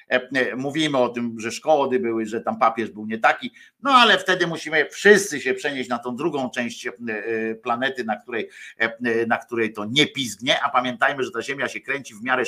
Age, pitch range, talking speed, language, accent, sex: 50-69, 120-155 Hz, 190 wpm, Polish, native, male